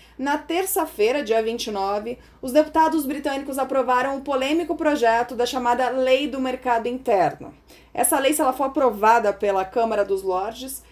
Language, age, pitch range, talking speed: Portuguese, 20-39, 235-305 Hz, 150 wpm